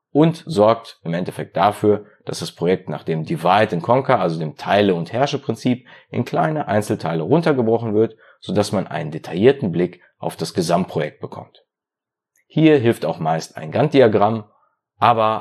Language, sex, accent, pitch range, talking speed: German, male, German, 90-125 Hz, 145 wpm